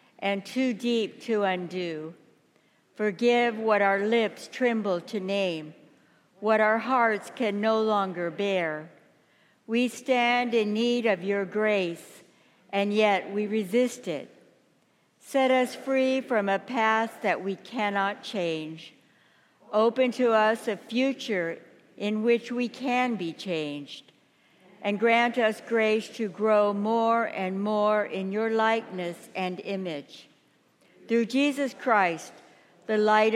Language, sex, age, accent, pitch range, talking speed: English, female, 60-79, American, 185-230 Hz, 130 wpm